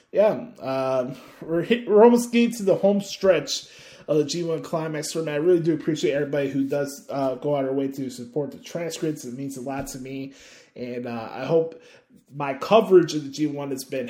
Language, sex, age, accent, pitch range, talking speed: English, male, 20-39, American, 130-170 Hz, 220 wpm